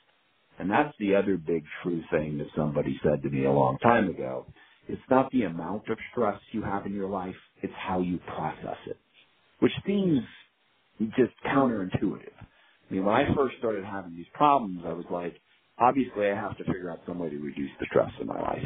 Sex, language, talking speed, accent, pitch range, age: male, English, 205 wpm, American, 85-130 Hz, 50-69